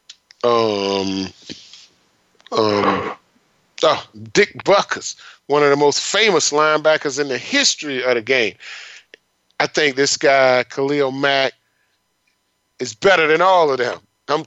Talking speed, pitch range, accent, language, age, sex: 125 wpm, 120-175 Hz, American, English, 30-49, male